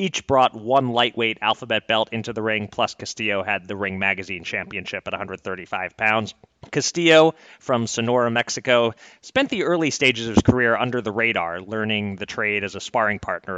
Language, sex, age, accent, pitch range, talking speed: English, male, 30-49, American, 100-125 Hz, 175 wpm